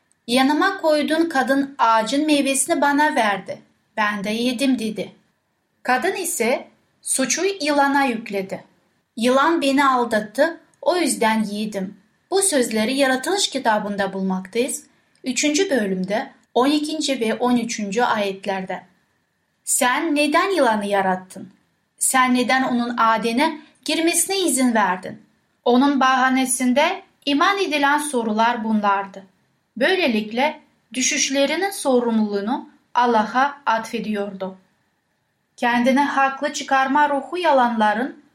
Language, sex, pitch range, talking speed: Turkish, female, 220-290 Hz, 95 wpm